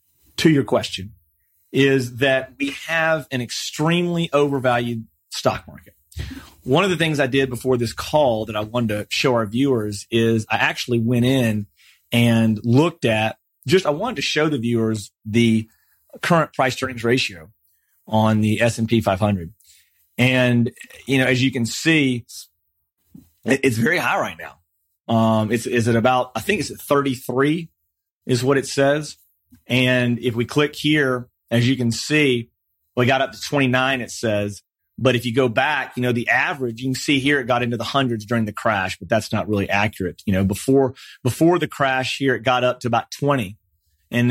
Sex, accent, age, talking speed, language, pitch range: male, American, 30-49, 180 wpm, English, 110-135 Hz